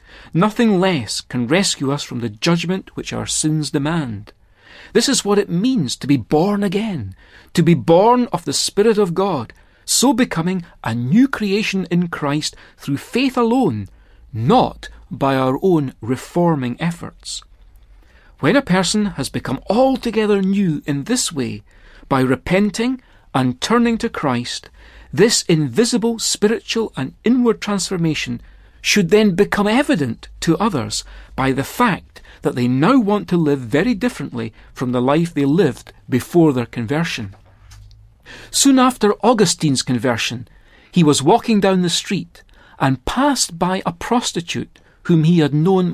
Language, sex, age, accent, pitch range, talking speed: English, male, 40-59, British, 130-215 Hz, 145 wpm